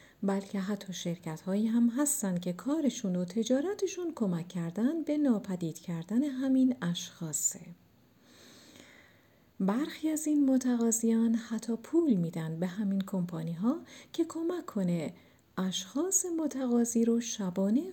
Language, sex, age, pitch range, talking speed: Persian, female, 40-59, 185-275 Hz, 110 wpm